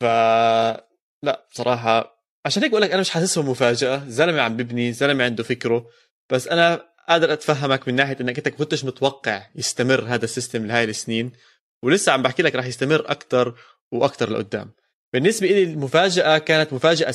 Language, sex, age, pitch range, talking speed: Arabic, male, 20-39, 115-140 Hz, 155 wpm